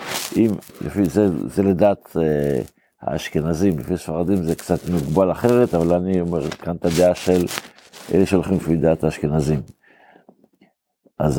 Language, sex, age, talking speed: Hebrew, male, 60-79, 130 wpm